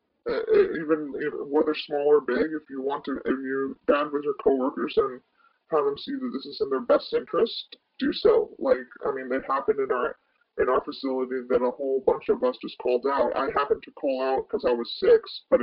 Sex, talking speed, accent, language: female, 225 wpm, American, English